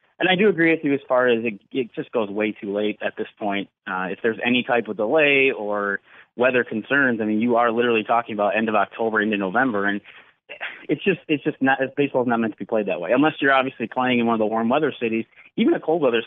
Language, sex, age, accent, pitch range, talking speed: English, male, 30-49, American, 110-135 Hz, 260 wpm